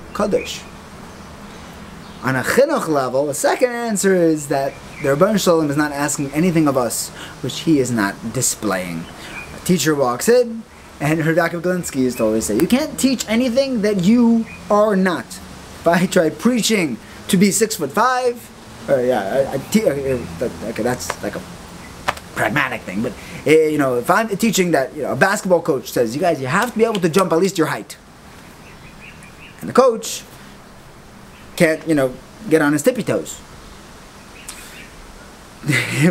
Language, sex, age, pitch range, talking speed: English, male, 20-39, 140-210 Hz, 170 wpm